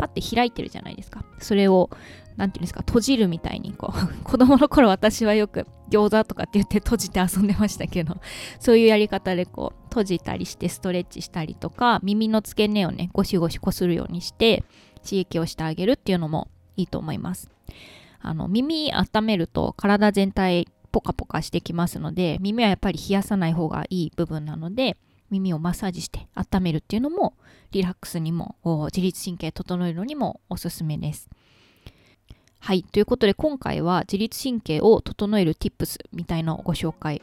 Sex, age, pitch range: female, 20-39, 165-210 Hz